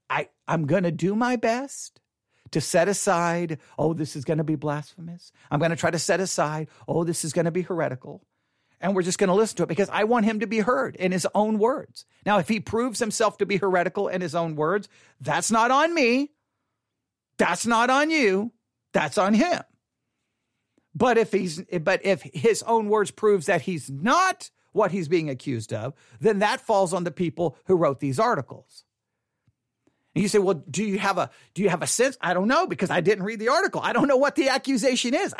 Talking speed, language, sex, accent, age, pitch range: 210 wpm, English, male, American, 50-69, 170-230 Hz